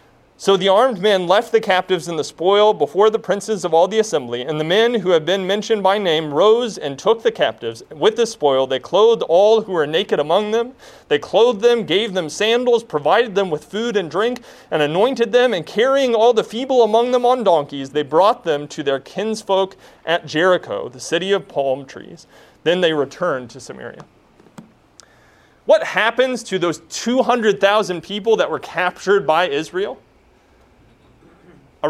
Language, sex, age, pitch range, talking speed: English, male, 30-49, 165-235 Hz, 180 wpm